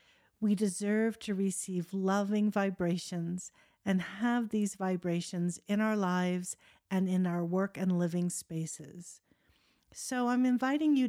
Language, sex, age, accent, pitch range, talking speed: English, female, 50-69, American, 170-215 Hz, 130 wpm